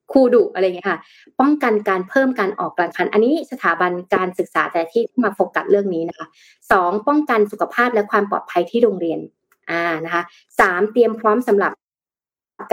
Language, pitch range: Thai, 180-225 Hz